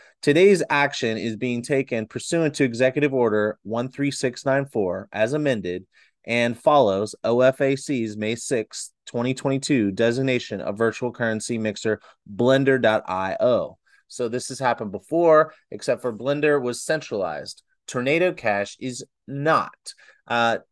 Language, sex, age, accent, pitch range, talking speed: English, male, 30-49, American, 110-140 Hz, 115 wpm